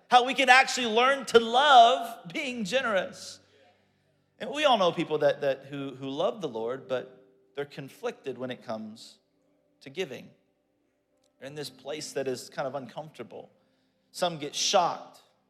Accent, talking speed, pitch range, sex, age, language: American, 160 wpm, 135-210 Hz, male, 40-59, English